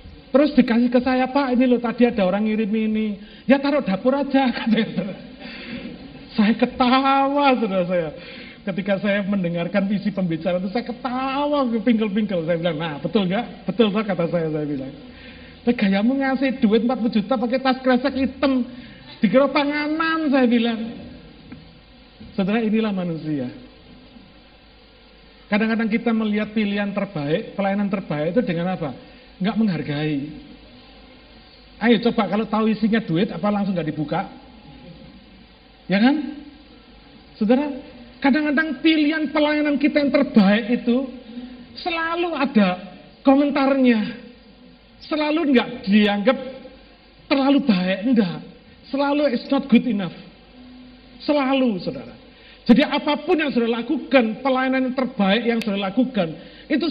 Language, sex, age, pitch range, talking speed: Malay, male, 40-59, 210-265 Hz, 125 wpm